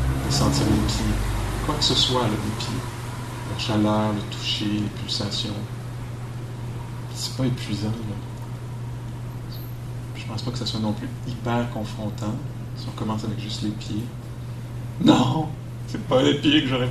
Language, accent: English, French